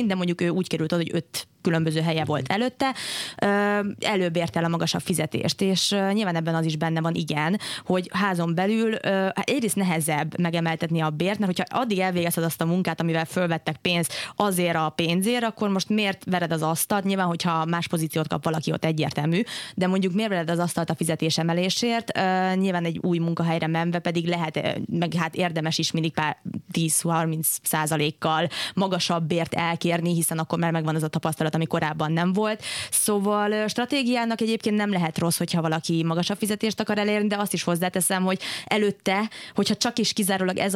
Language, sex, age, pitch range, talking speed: Hungarian, female, 20-39, 165-195 Hz, 175 wpm